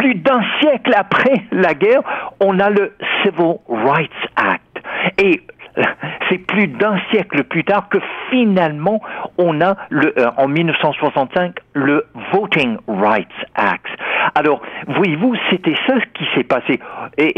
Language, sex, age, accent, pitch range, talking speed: French, male, 60-79, French, 140-215 Hz, 140 wpm